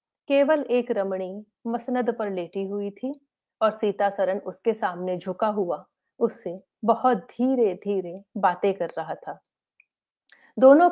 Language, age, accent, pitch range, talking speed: Hindi, 30-49, native, 195-255 Hz, 130 wpm